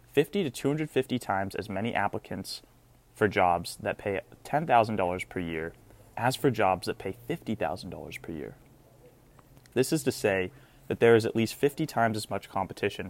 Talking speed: 165 wpm